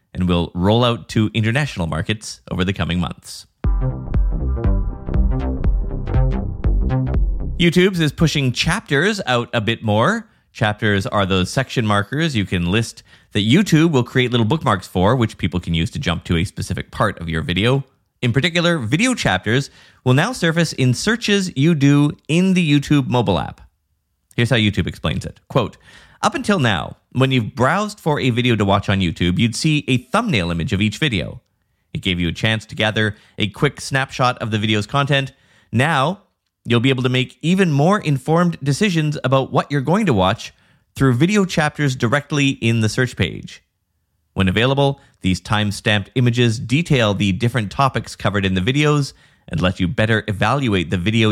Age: 30-49